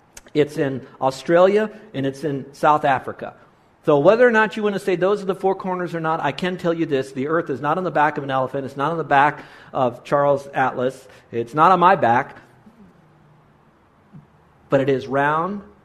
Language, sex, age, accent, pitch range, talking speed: English, male, 50-69, American, 125-165 Hz, 210 wpm